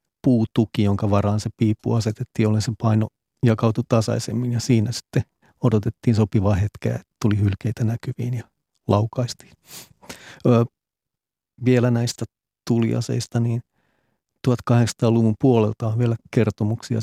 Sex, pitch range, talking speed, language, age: male, 110-120 Hz, 115 wpm, Finnish, 40-59